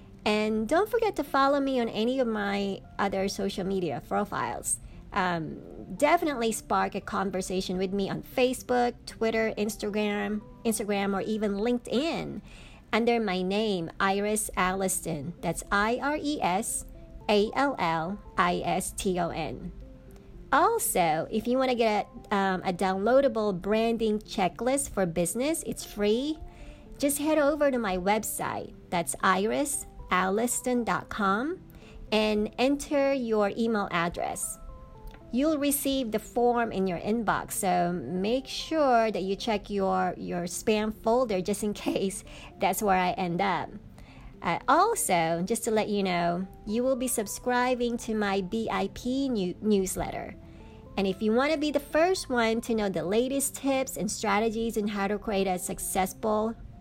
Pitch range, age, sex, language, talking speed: 195-245 Hz, 50-69, male, English, 135 wpm